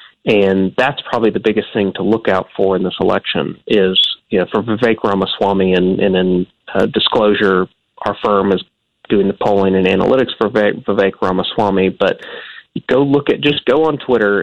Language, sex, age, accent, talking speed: English, male, 30-49, American, 185 wpm